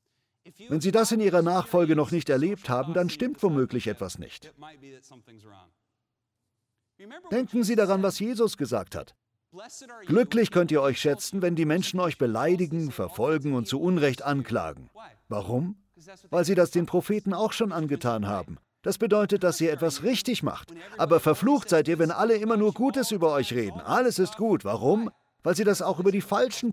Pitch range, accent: 130-205 Hz, German